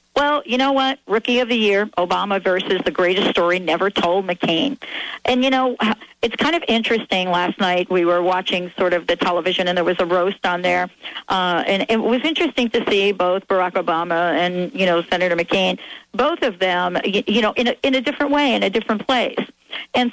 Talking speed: 210 wpm